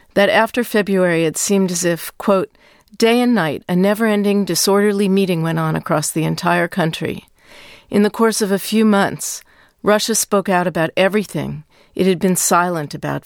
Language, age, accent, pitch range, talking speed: English, 50-69, American, 170-210 Hz, 170 wpm